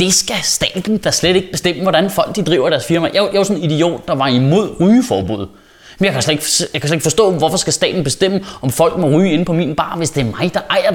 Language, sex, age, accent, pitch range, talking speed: Danish, male, 20-39, native, 150-200 Hz, 280 wpm